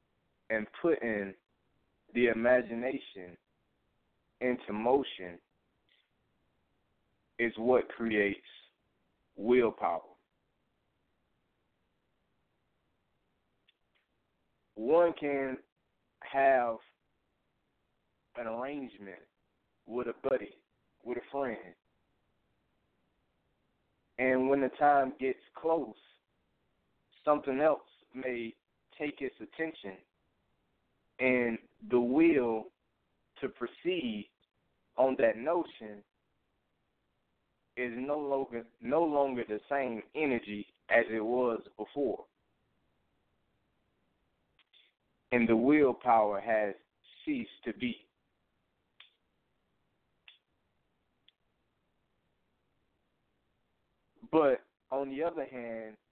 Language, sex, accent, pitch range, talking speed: English, male, American, 105-140 Hz, 70 wpm